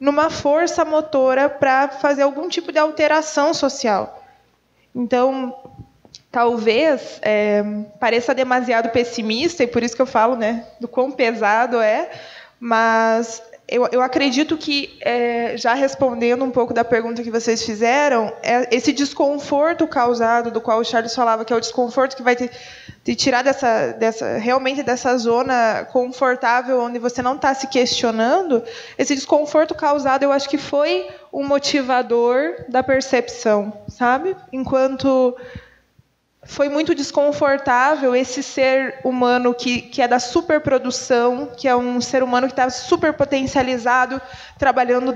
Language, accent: Portuguese, Brazilian